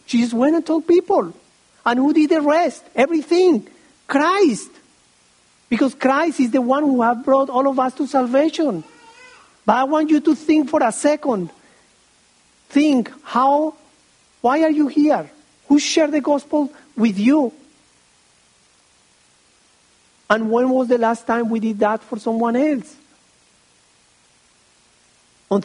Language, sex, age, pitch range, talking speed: English, male, 50-69, 205-280 Hz, 140 wpm